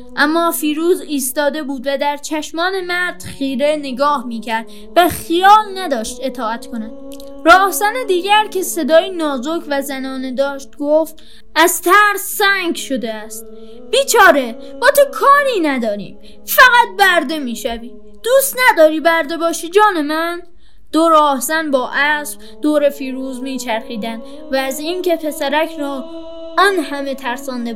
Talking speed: 135 wpm